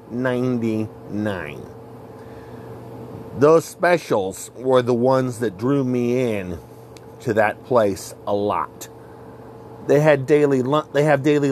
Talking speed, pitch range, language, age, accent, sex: 115 wpm, 115-140 Hz, English, 50-69, American, male